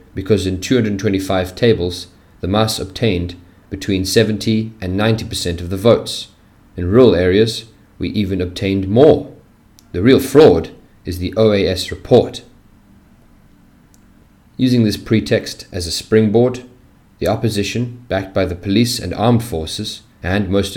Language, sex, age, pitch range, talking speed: English, male, 40-59, 90-110 Hz, 130 wpm